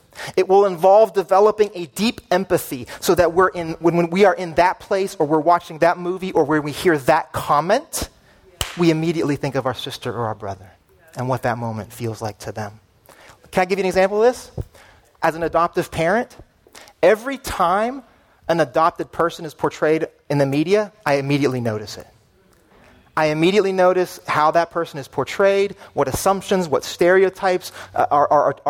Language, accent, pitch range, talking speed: English, American, 115-175 Hz, 180 wpm